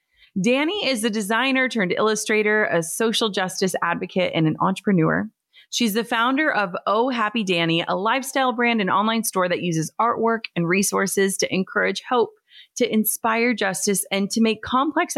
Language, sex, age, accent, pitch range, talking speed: English, female, 30-49, American, 195-255 Hz, 160 wpm